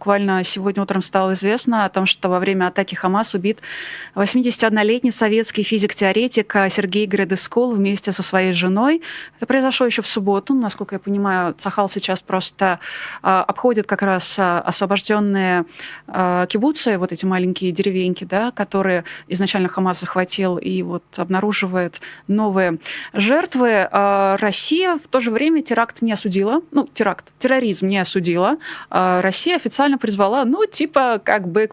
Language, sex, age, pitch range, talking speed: Russian, female, 20-39, 190-235 Hz, 140 wpm